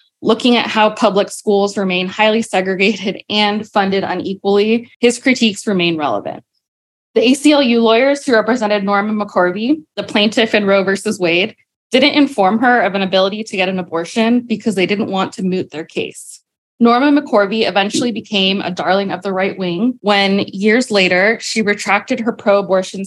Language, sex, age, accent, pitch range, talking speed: English, female, 20-39, American, 190-225 Hz, 165 wpm